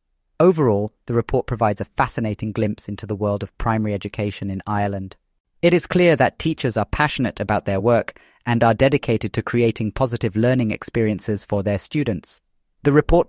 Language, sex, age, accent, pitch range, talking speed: English, male, 30-49, British, 100-125 Hz, 170 wpm